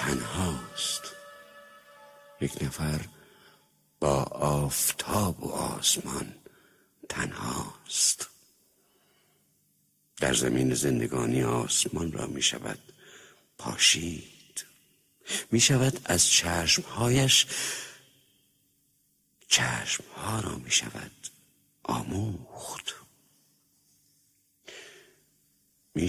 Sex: male